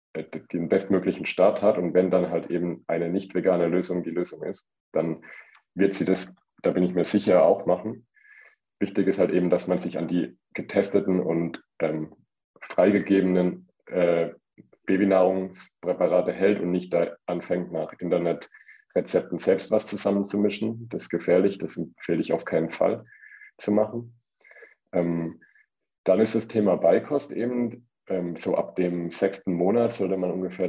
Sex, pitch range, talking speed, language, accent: male, 85-105 Hz, 155 wpm, German, German